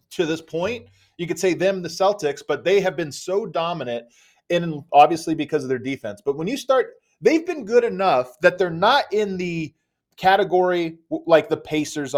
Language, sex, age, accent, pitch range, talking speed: English, male, 30-49, American, 135-190 Hz, 185 wpm